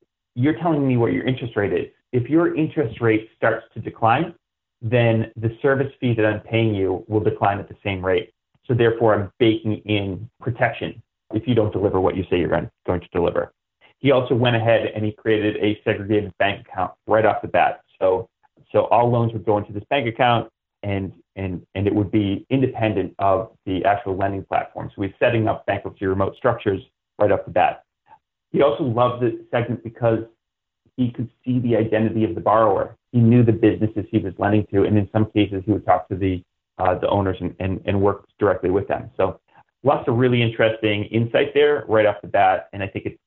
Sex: male